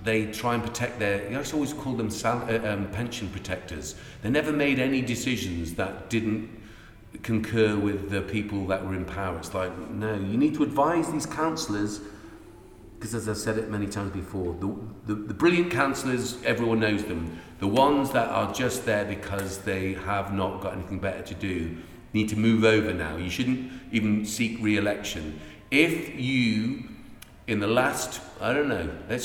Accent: British